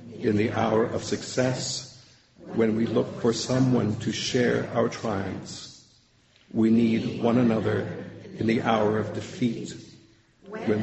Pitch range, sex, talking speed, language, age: 105-120 Hz, male, 135 wpm, English, 50-69